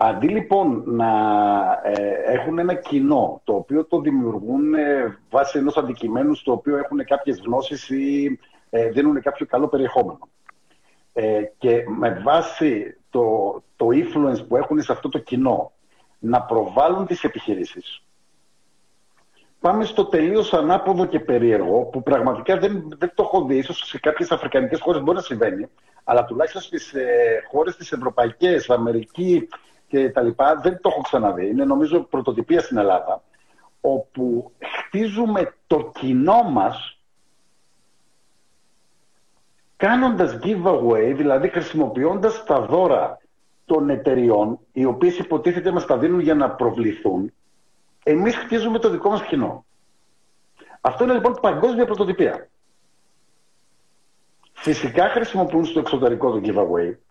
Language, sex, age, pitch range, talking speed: Greek, male, 50-69, 135-220 Hz, 125 wpm